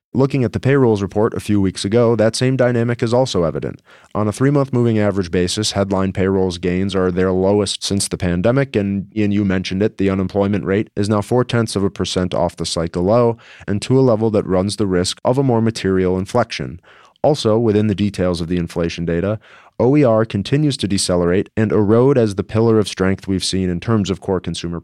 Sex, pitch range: male, 95-120 Hz